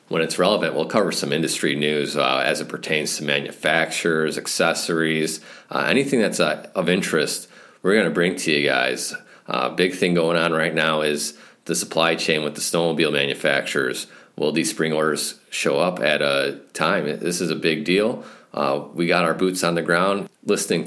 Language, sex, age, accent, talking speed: English, male, 40-59, American, 190 wpm